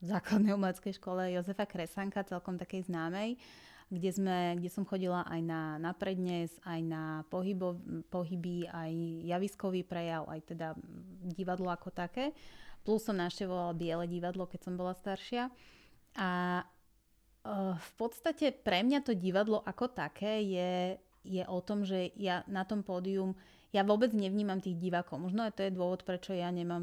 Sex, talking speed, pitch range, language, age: female, 150 wpm, 175-210 Hz, Slovak, 30-49